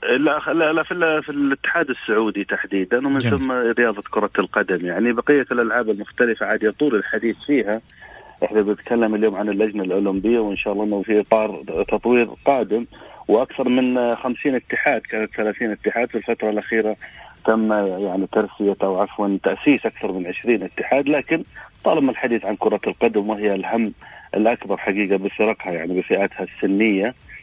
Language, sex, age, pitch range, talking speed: Arabic, male, 40-59, 100-120 Hz, 150 wpm